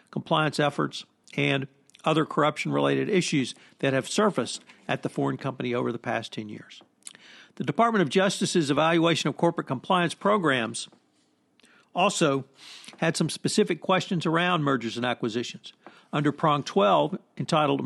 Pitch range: 140-170 Hz